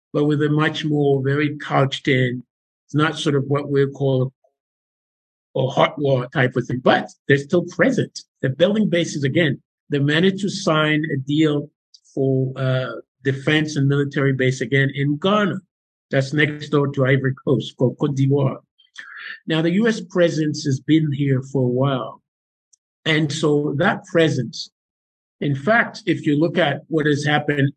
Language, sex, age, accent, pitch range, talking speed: English, male, 50-69, American, 130-150 Hz, 165 wpm